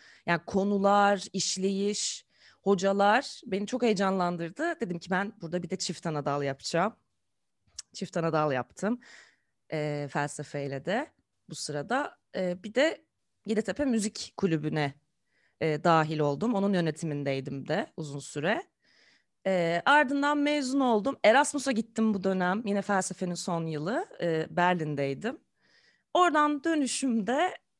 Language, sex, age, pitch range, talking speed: Turkish, female, 30-49, 165-230 Hz, 110 wpm